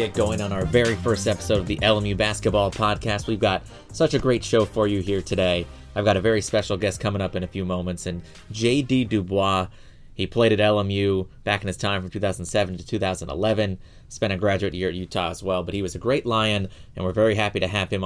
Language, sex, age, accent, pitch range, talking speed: English, male, 30-49, American, 95-115 Hz, 230 wpm